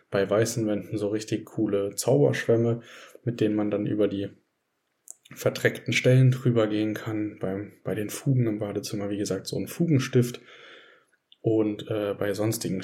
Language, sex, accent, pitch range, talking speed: German, male, German, 105-120 Hz, 155 wpm